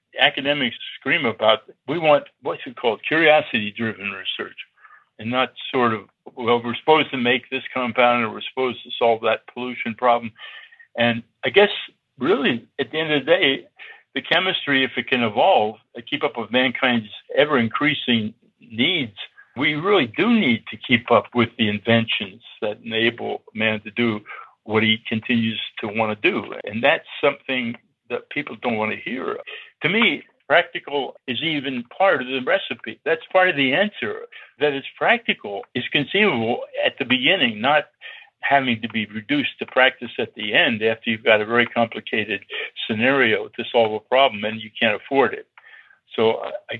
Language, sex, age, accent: English, male, 60-79, American